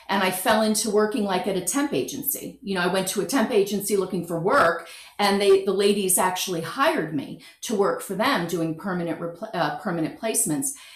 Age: 40-59